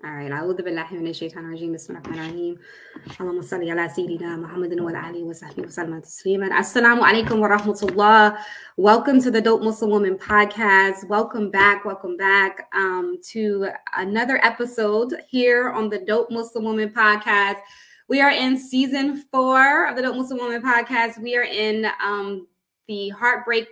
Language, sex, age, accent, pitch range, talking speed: English, female, 20-39, American, 195-235 Hz, 100 wpm